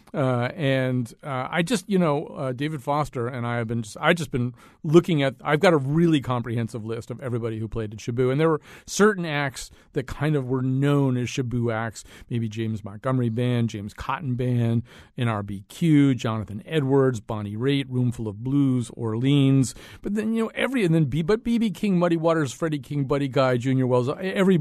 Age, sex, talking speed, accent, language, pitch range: 40-59, male, 200 wpm, American, English, 120-150 Hz